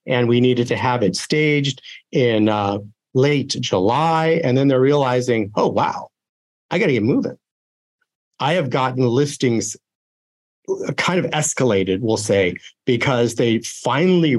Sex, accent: male, American